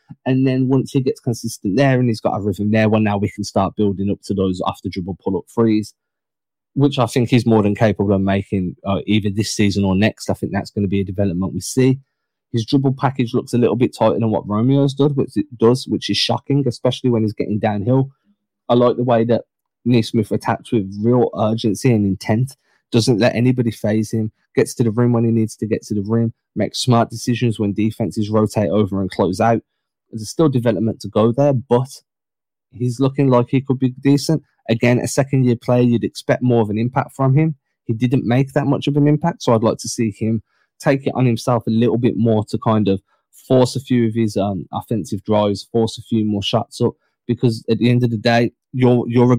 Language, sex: English, male